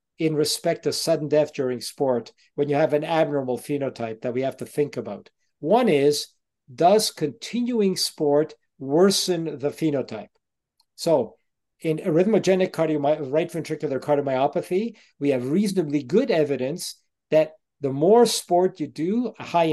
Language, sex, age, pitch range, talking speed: English, male, 50-69, 140-180 Hz, 135 wpm